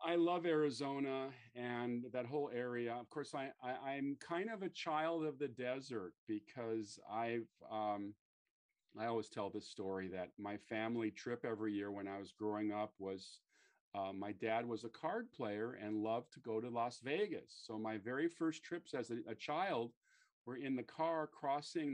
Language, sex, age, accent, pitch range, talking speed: English, male, 40-59, American, 110-140 Hz, 180 wpm